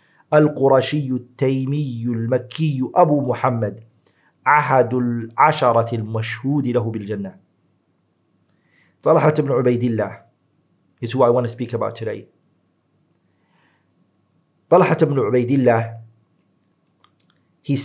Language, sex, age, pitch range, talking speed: English, male, 40-59, 115-150 Hz, 90 wpm